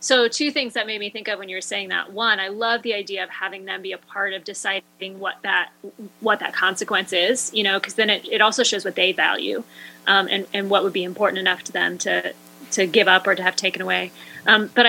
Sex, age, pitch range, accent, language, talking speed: female, 20-39, 190-230 Hz, American, English, 260 wpm